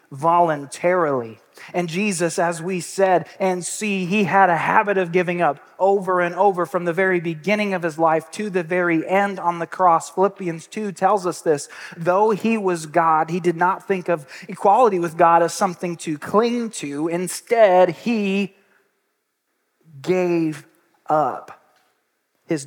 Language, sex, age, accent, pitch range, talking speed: English, male, 30-49, American, 135-185 Hz, 155 wpm